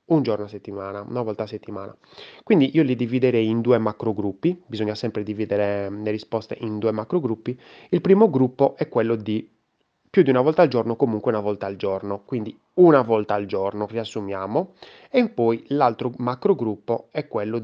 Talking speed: 175 wpm